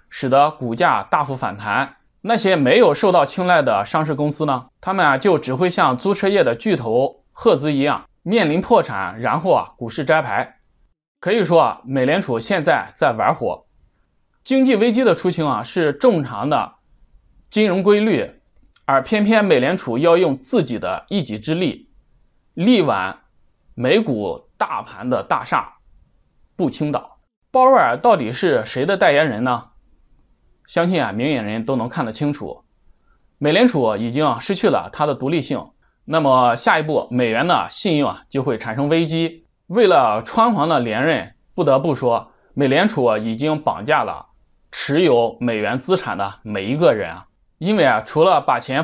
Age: 20-39